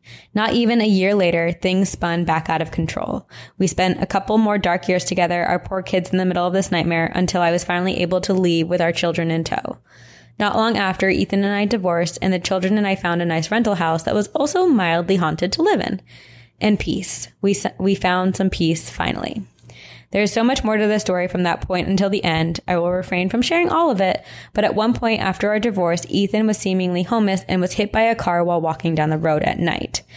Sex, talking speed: female, 235 wpm